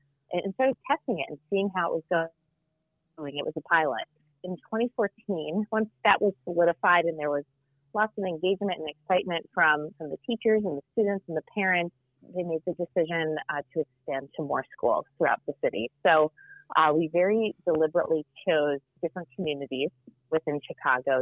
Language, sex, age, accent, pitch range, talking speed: English, female, 30-49, American, 150-180 Hz, 175 wpm